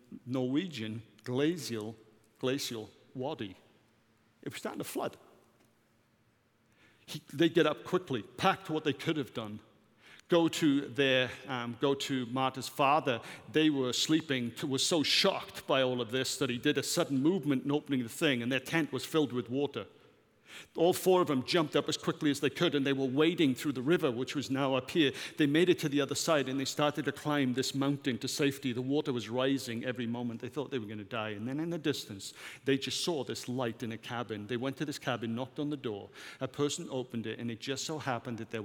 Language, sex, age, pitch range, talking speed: English, male, 50-69, 115-150 Hz, 215 wpm